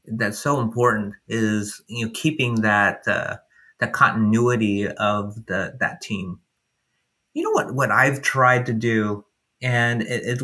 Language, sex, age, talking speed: English, male, 30-49, 150 wpm